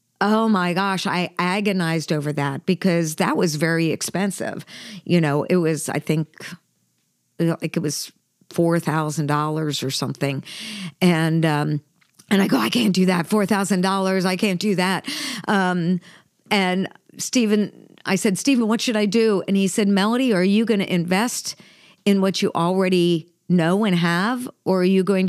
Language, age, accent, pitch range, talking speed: English, 50-69, American, 170-205 Hz, 160 wpm